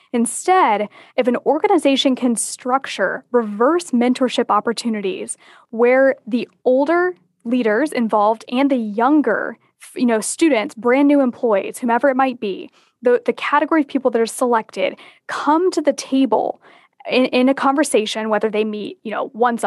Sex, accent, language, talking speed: female, American, English, 150 wpm